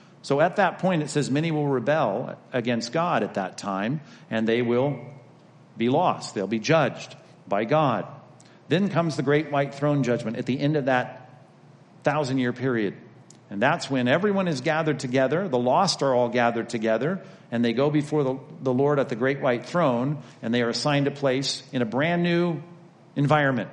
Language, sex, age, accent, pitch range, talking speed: English, male, 50-69, American, 125-155 Hz, 180 wpm